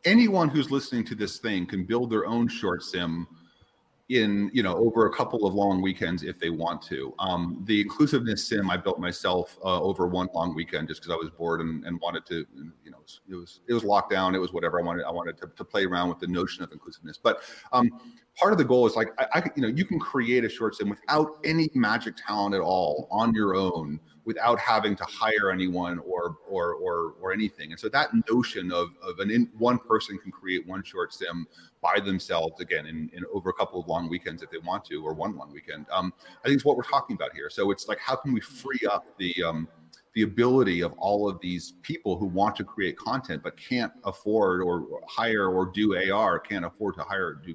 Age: 40-59